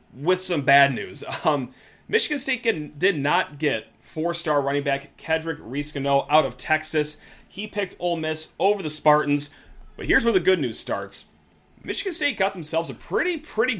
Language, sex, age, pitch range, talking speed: English, male, 30-49, 135-185 Hz, 170 wpm